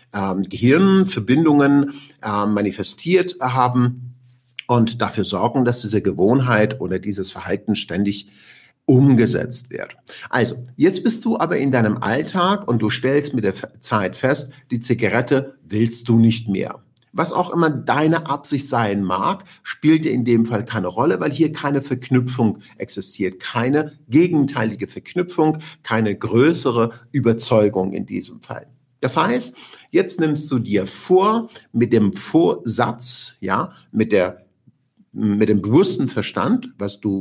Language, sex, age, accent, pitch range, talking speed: German, male, 50-69, German, 105-140 Hz, 135 wpm